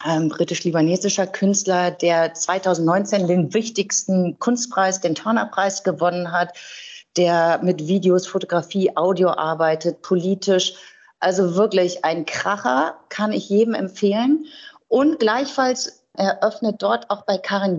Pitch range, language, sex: 165-205 Hz, German, female